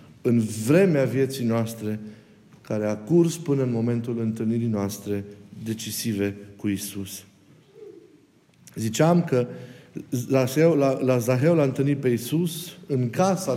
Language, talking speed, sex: Romanian, 120 wpm, male